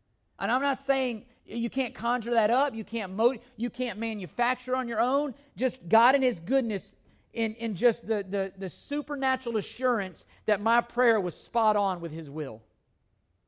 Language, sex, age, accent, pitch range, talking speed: English, male, 40-59, American, 185-255 Hz, 180 wpm